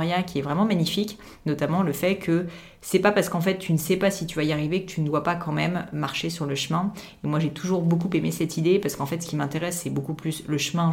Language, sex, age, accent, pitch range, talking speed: French, female, 30-49, French, 150-185 Hz, 285 wpm